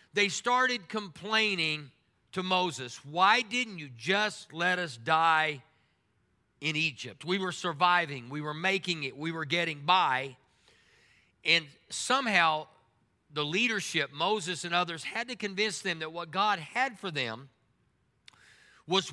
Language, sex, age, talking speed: English, male, 50-69, 135 wpm